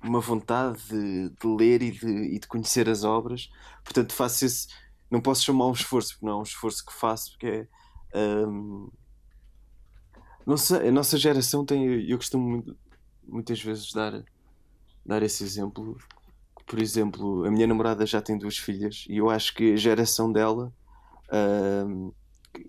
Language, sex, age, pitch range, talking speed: Portuguese, male, 20-39, 105-120 Hz, 160 wpm